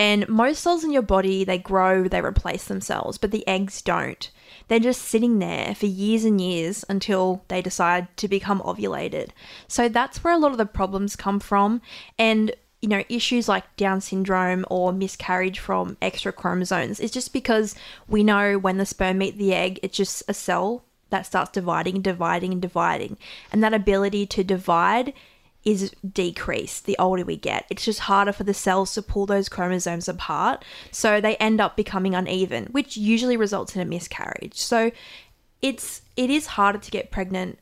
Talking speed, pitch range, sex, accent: 185 wpm, 190-220 Hz, female, Australian